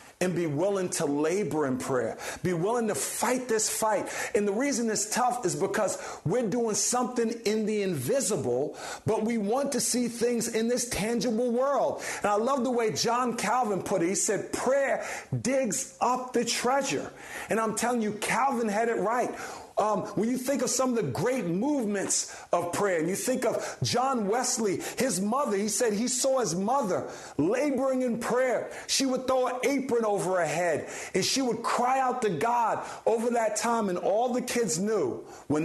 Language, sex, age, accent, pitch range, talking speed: English, male, 50-69, American, 190-240 Hz, 190 wpm